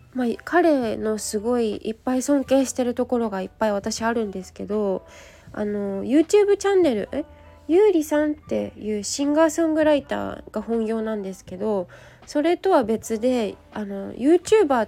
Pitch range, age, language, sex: 200-290 Hz, 20-39, Japanese, female